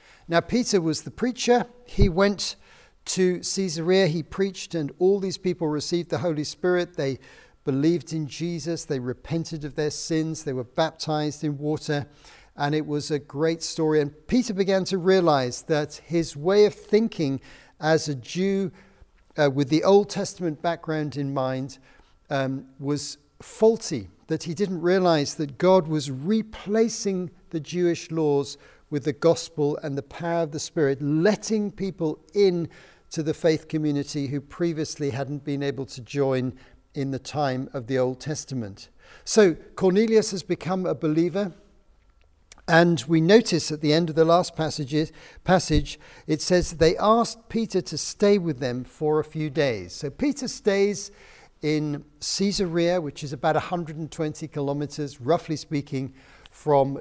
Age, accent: 50-69, British